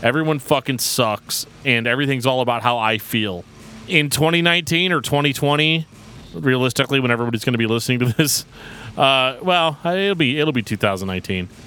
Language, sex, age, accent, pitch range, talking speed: English, male, 30-49, American, 105-140 Hz, 155 wpm